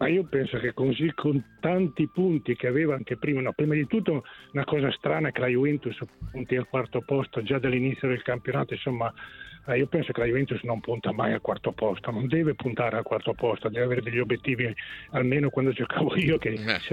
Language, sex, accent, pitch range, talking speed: Italian, male, native, 125-150 Hz, 210 wpm